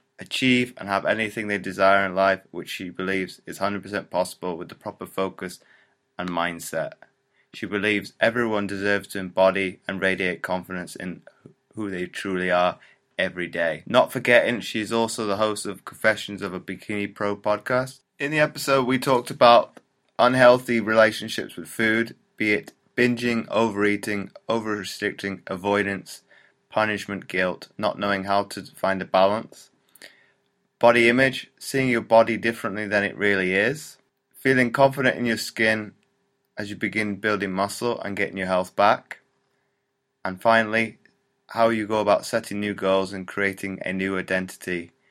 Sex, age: male, 20-39